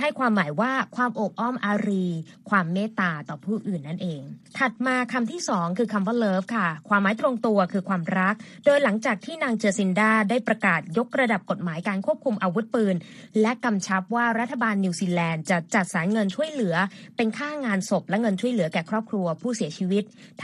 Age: 20-39